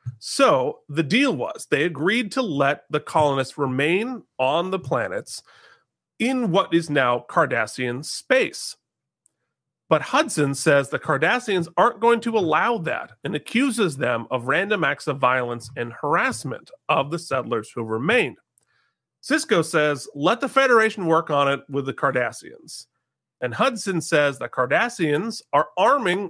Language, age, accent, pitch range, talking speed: English, 30-49, American, 130-175 Hz, 145 wpm